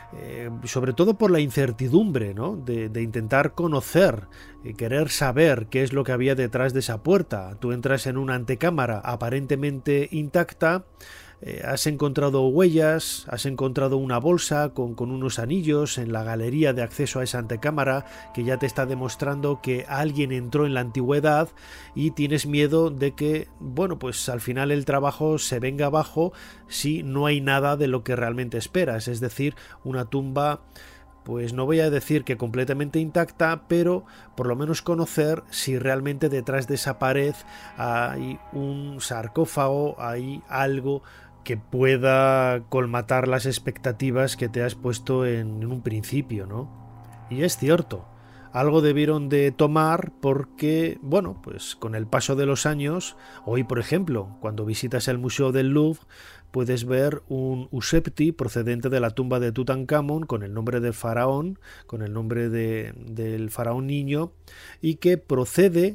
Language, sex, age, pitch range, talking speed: Spanish, male, 30-49, 120-150 Hz, 160 wpm